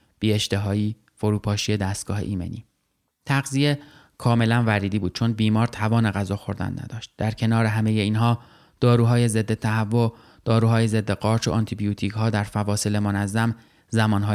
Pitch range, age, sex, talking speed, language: 105-115 Hz, 30-49, male, 135 wpm, Persian